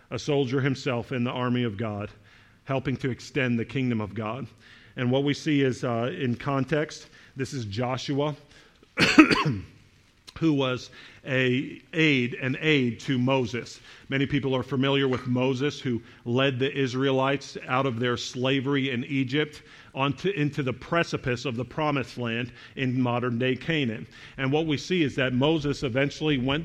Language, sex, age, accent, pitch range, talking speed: English, male, 50-69, American, 125-145 Hz, 160 wpm